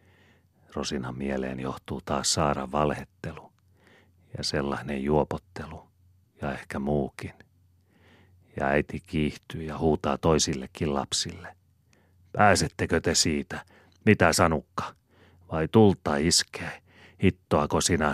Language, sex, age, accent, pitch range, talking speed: Finnish, male, 40-59, native, 75-95 Hz, 95 wpm